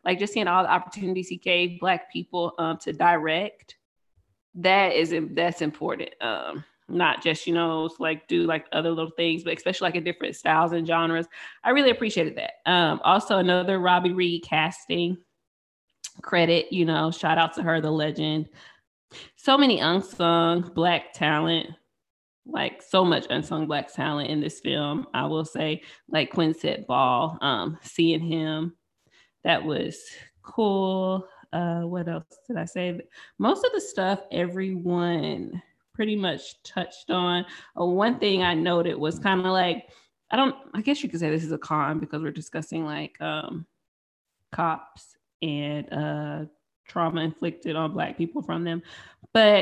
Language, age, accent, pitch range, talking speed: English, 20-39, American, 160-185 Hz, 160 wpm